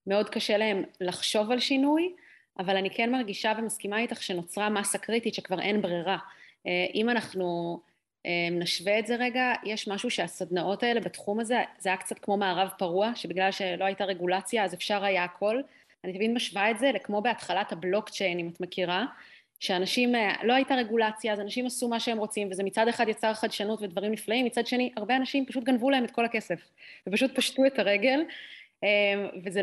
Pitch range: 190-235 Hz